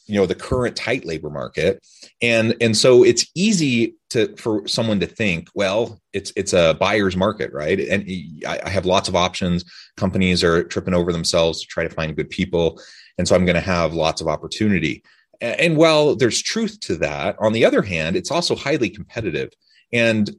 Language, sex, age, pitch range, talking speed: English, male, 30-49, 85-105 Hz, 190 wpm